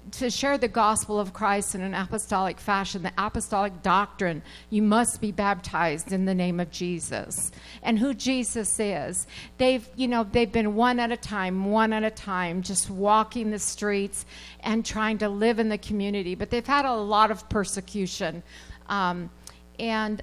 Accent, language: American, English